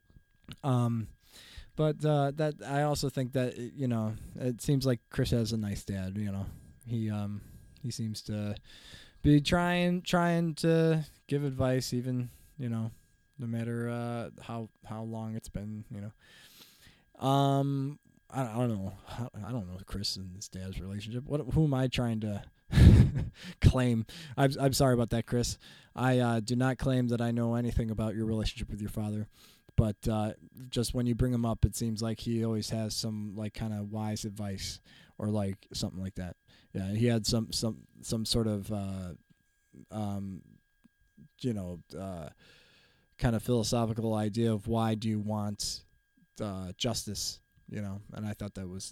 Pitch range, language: 105-125 Hz, English